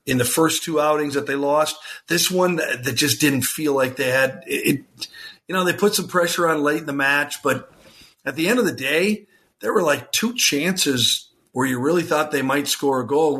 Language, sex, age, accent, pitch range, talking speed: English, male, 50-69, American, 140-170 Hz, 225 wpm